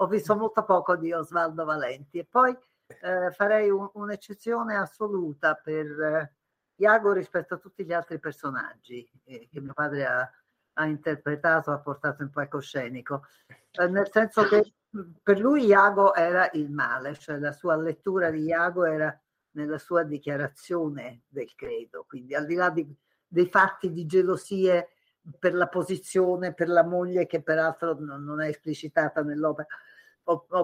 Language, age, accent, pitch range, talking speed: Italian, 50-69, native, 145-185 Hz, 155 wpm